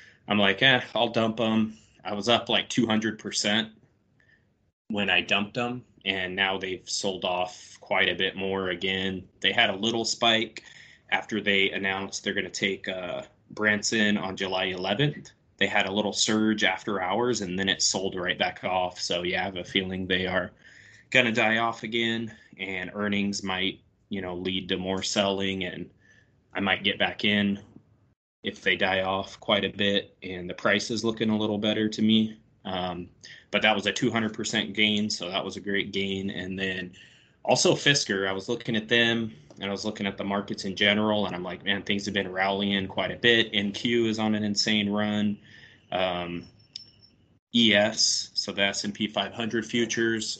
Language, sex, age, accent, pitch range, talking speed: English, male, 20-39, American, 95-110 Hz, 185 wpm